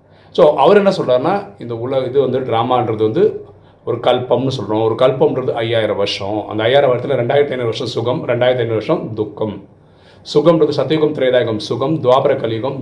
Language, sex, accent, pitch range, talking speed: Tamil, male, native, 115-150 Hz, 160 wpm